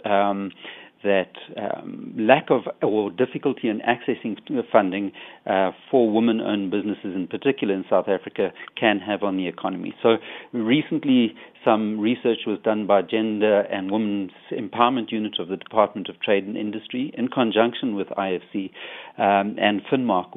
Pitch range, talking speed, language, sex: 100-120 Hz, 145 wpm, English, male